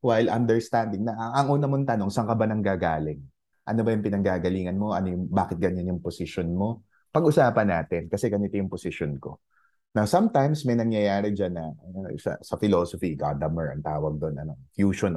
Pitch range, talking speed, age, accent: 95-125 Hz, 180 wpm, 20-39, native